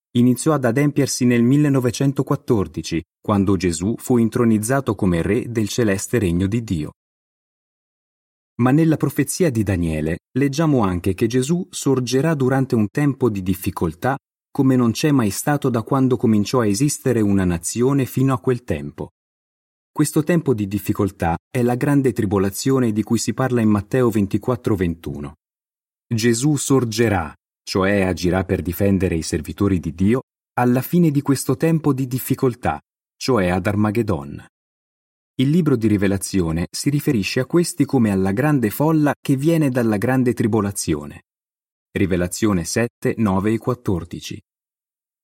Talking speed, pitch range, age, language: 140 wpm, 95-135 Hz, 30-49, Italian